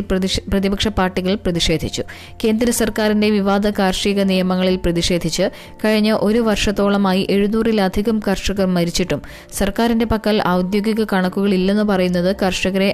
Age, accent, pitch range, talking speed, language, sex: 20-39, native, 185-210 Hz, 95 wpm, Malayalam, female